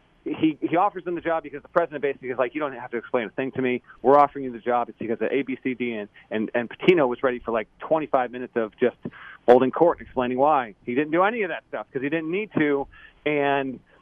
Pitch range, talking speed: 135-175 Hz, 255 wpm